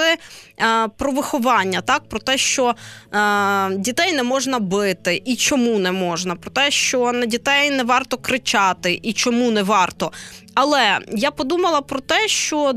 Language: Ukrainian